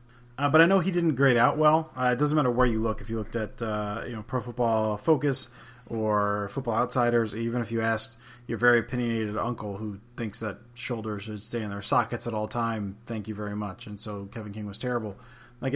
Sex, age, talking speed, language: male, 30-49, 230 wpm, English